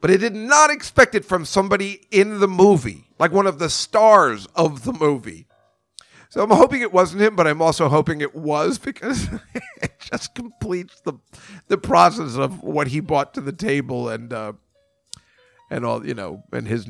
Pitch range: 120-165 Hz